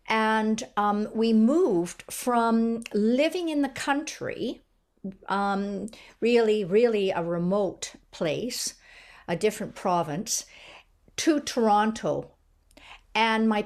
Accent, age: American, 50-69